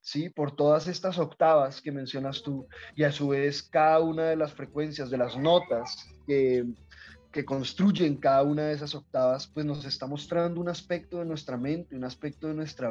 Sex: male